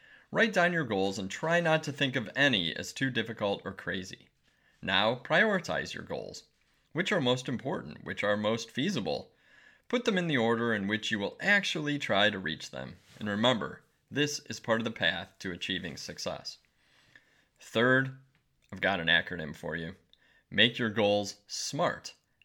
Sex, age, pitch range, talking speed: male, 30-49, 100-140 Hz, 170 wpm